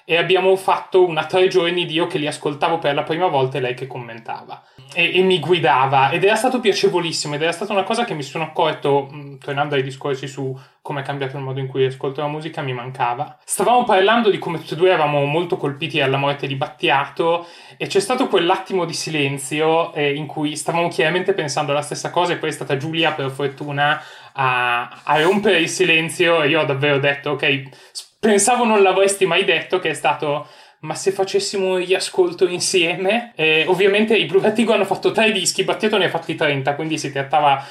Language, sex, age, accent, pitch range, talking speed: Italian, male, 20-39, native, 140-175 Hz, 205 wpm